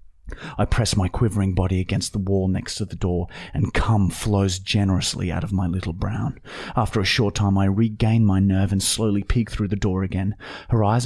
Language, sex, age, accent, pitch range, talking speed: English, male, 30-49, Australian, 100-125 Hz, 205 wpm